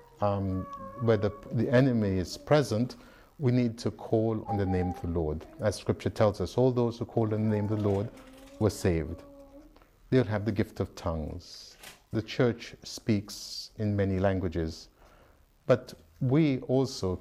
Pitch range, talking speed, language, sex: 95-120 Hz, 165 wpm, English, male